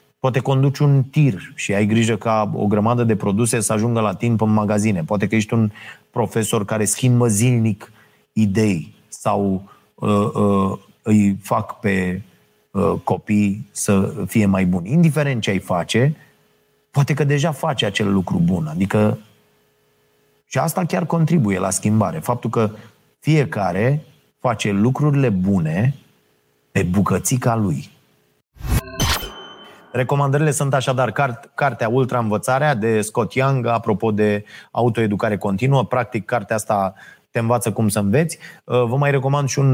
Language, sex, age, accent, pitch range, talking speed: Romanian, male, 30-49, native, 105-130 Hz, 135 wpm